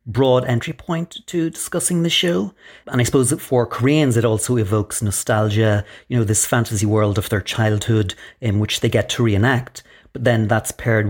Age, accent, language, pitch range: 30-49, Irish, English, 105-125 Hz